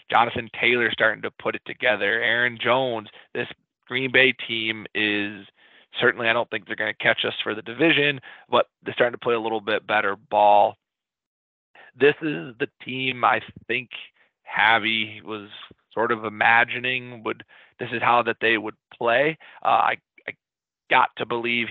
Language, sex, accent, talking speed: English, male, American, 170 wpm